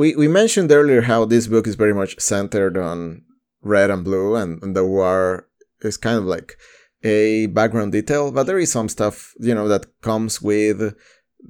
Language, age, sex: English, 20-39, male